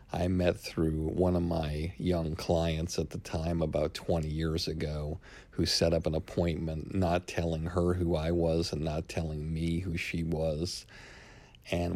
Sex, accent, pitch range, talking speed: male, American, 80-90 Hz, 170 wpm